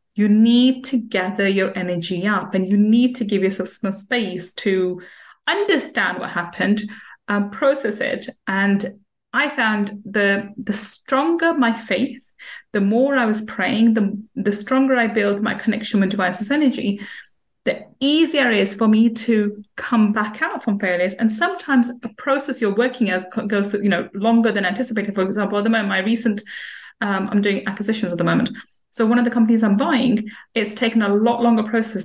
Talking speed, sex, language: 185 wpm, female, English